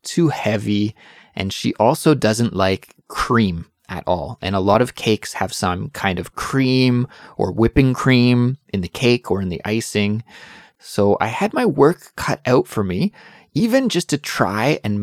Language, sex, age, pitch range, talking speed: English, male, 20-39, 100-135 Hz, 175 wpm